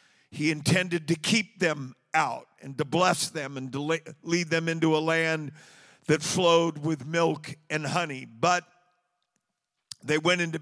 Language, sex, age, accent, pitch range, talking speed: English, male, 50-69, American, 160-190 Hz, 155 wpm